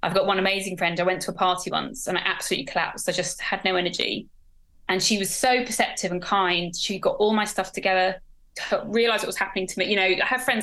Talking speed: 250 wpm